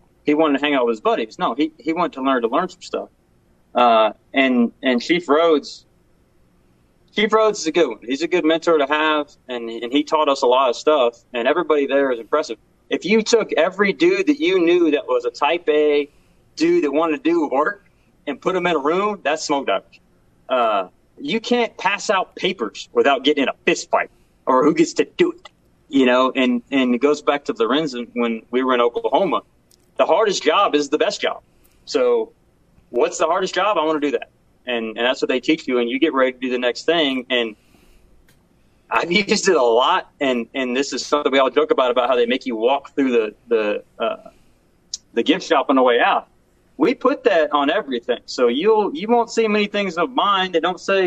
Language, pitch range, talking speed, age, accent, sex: English, 125-215 Hz, 225 wpm, 30-49, American, male